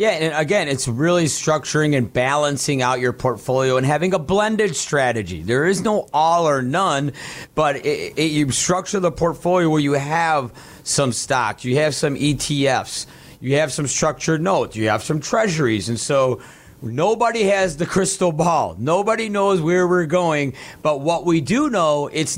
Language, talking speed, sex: English, 170 wpm, male